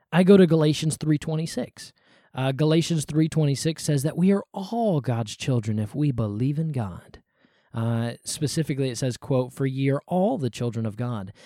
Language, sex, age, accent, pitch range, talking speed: English, male, 20-39, American, 120-160 Hz, 175 wpm